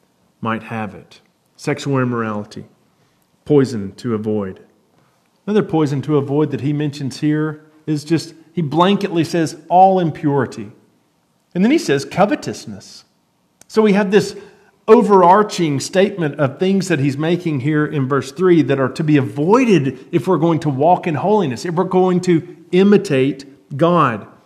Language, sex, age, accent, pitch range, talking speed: English, male, 40-59, American, 130-175 Hz, 150 wpm